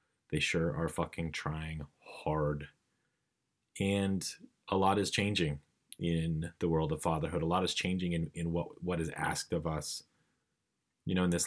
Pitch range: 80-90 Hz